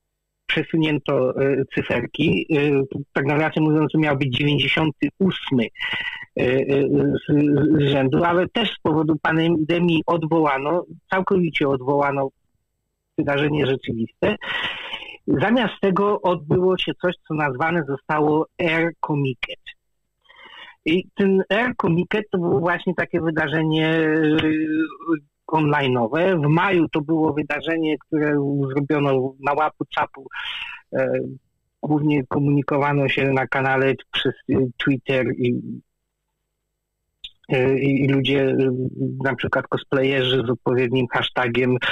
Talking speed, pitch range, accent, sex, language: 95 wpm, 135-165 Hz, native, male, Polish